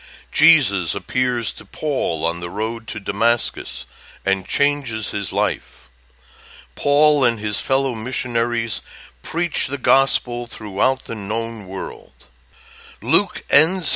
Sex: male